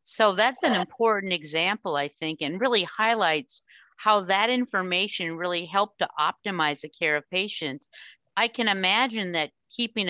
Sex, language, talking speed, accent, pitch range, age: female, English, 155 wpm, American, 155-200 Hz, 50-69